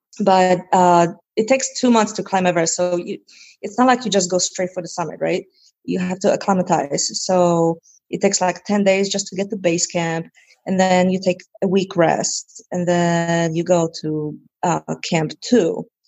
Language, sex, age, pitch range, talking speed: English, female, 20-39, 175-200 Hz, 200 wpm